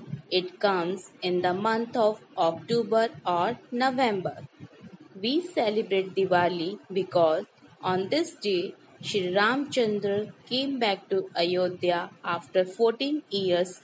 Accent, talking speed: Indian, 110 wpm